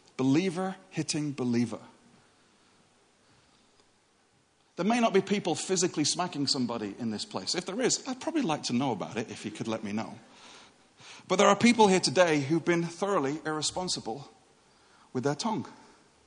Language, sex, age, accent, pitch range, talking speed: English, male, 40-59, British, 140-185 Hz, 160 wpm